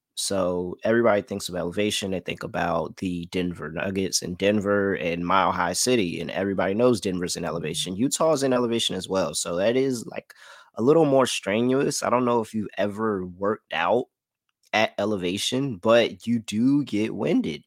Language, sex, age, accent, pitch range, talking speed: English, male, 20-39, American, 90-110 Hz, 175 wpm